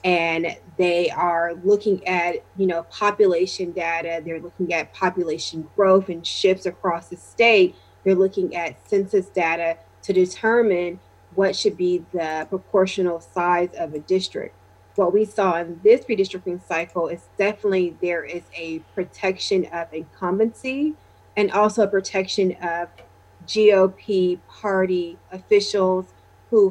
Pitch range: 175-200 Hz